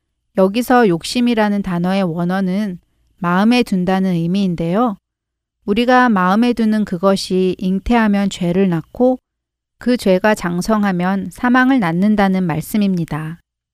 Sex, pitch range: female, 180-225 Hz